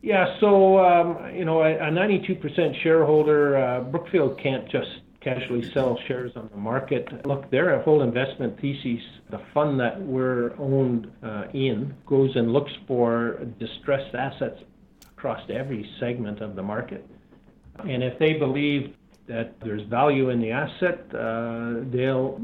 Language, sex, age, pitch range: English, male, 50-69, 115-140 Hz